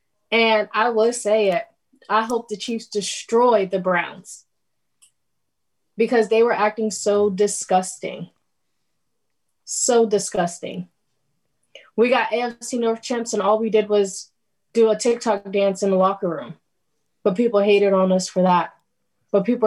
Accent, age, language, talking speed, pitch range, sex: American, 20-39, English, 145 wpm, 190-225 Hz, female